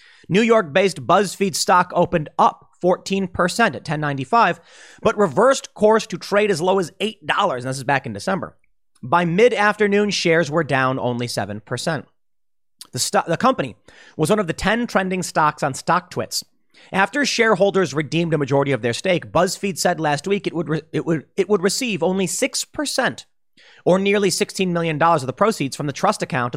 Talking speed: 165 wpm